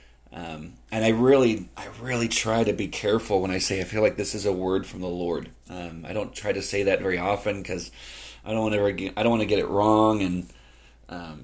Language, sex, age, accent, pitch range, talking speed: English, male, 40-59, American, 95-120 Hz, 245 wpm